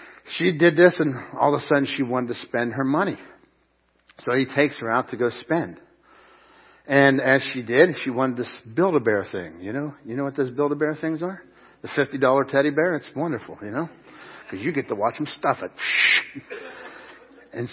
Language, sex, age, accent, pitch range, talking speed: English, male, 60-79, American, 130-195 Hz, 195 wpm